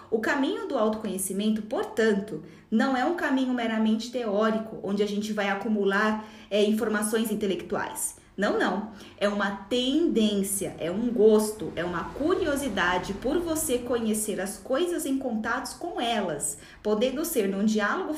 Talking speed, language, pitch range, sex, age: 140 wpm, Portuguese, 205-260 Hz, female, 20-39